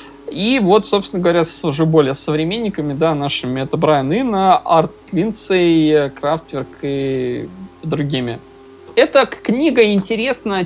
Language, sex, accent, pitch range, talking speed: Russian, male, native, 140-175 Hz, 120 wpm